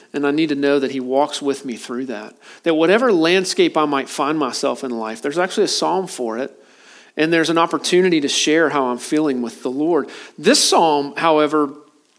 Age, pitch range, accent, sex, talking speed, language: 40-59, 135-165 Hz, American, male, 205 wpm, English